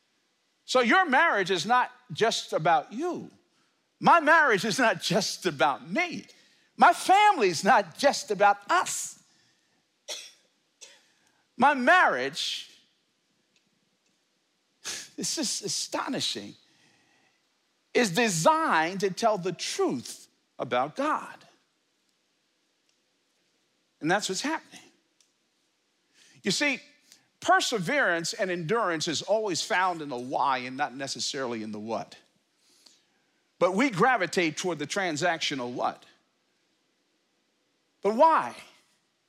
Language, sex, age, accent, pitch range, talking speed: English, male, 50-69, American, 165-250 Hz, 100 wpm